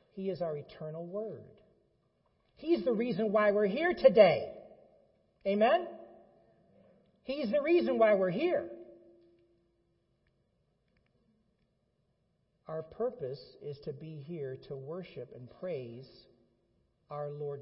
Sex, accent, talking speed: male, American, 105 wpm